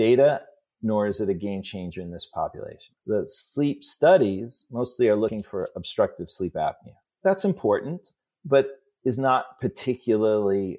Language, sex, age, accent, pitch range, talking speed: English, male, 30-49, American, 95-120 Hz, 145 wpm